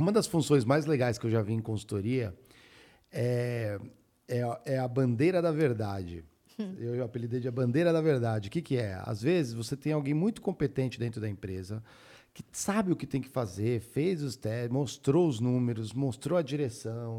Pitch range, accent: 120-165 Hz, Brazilian